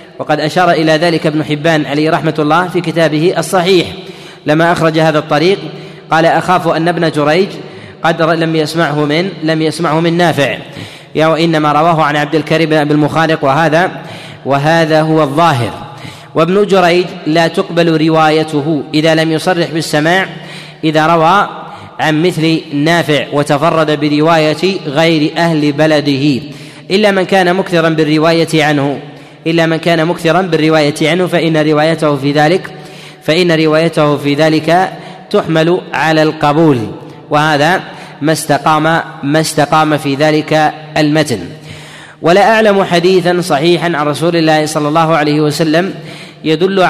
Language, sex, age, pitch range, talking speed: Arabic, male, 30-49, 150-170 Hz, 130 wpm